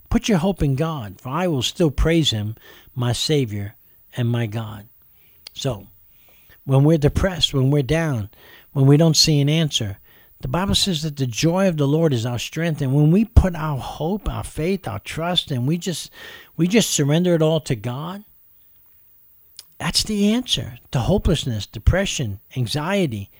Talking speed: 175 wpm